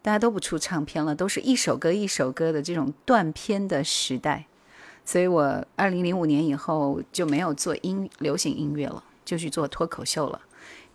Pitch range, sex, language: 145-195 Hz, female, Chinese